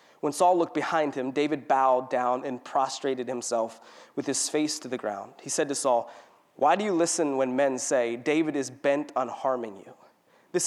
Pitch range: 145-185 Hz